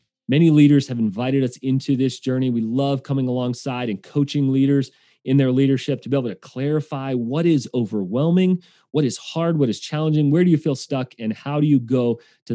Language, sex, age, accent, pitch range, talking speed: English, male, 30-49, American, 120-150 Hz, 205 wpm